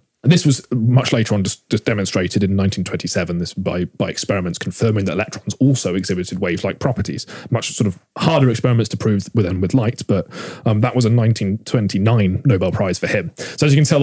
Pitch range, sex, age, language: 105-130 Hz, male, 30-49, English